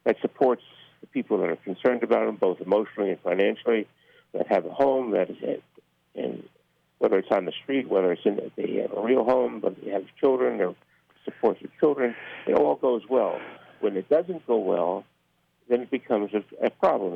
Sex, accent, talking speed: male, American, 200 wpm